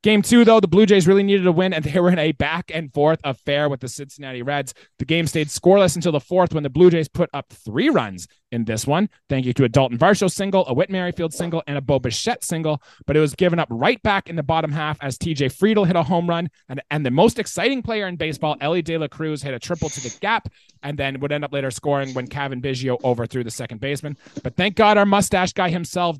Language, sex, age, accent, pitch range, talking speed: English, male, 30-49, American, 130-170 Hz, 255 wpm